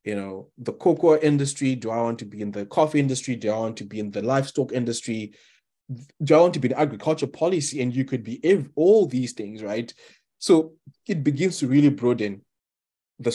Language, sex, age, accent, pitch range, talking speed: English, male, 20-39, South African, 115-150 Hz, 205 wpm